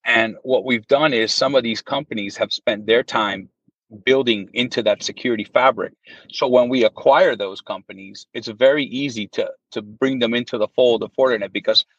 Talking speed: 185 wpm